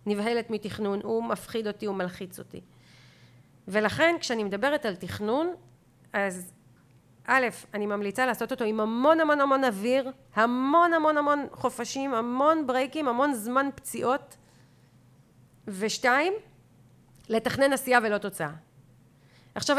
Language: Hebrew